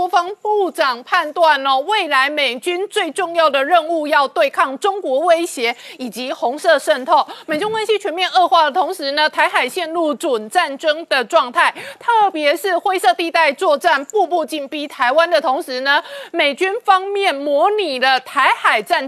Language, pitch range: Chinese, 285-360 Hz